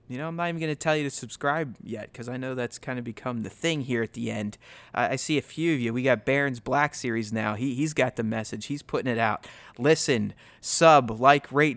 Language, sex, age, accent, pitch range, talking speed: English, male, 30-49, American, 115-145 Hz, 255 wpm